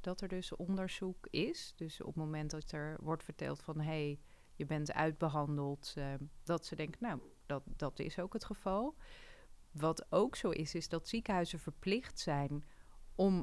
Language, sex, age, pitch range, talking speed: Dutch, female, 30-49, 150-195 Hz, 175 wpm